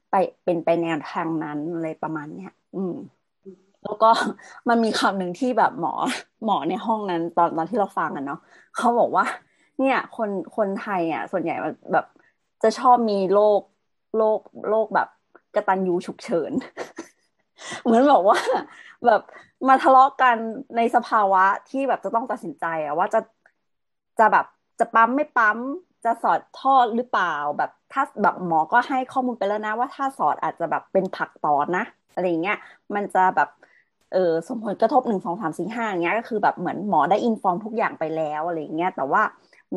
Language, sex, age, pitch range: Thai, female, 30-49, 180-250 Hz